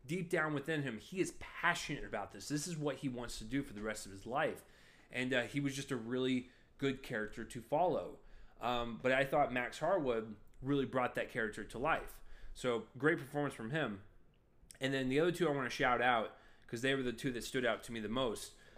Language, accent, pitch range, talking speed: English, American, 115-145 Hz, 230 wpm